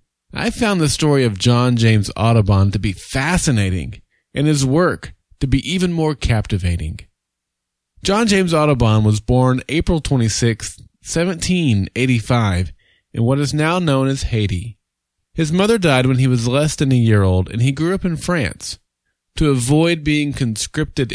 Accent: American